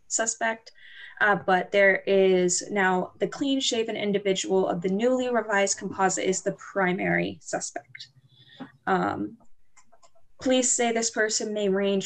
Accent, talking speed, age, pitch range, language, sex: American, 125 wpm, 10-29, 185-220 Hz, English, female